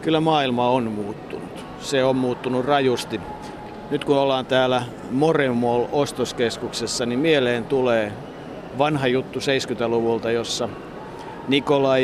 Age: 50-69